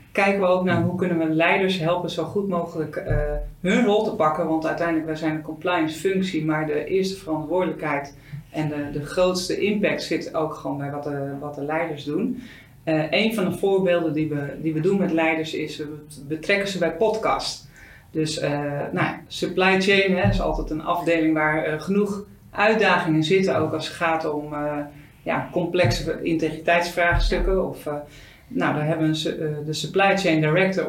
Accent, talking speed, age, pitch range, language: Dutch, 175 wpm, 40-59, 155-180 Hz, Dutch